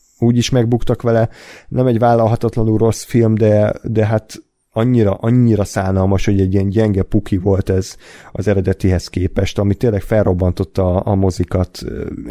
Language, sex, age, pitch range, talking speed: Hungarian, male, 30-49, 100-120 Hz, 140 wpm